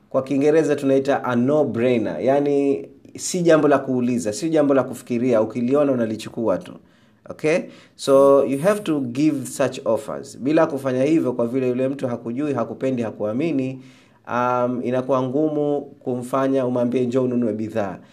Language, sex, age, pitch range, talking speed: Swahili, male, 30-49, 115-140 Hz, 145 wpm